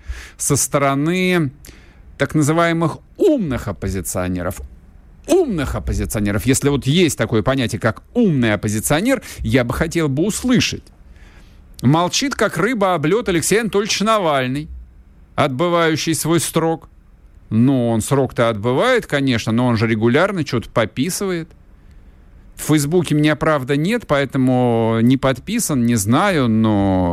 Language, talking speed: Russian, 115 wpm